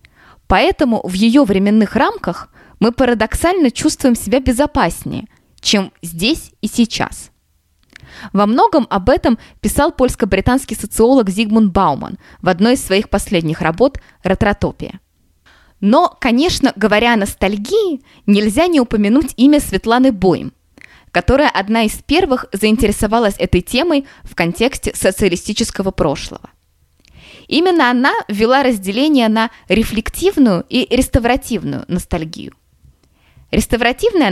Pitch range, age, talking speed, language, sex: 190-260 Hz, 20-39, 110 wpm, Russian, female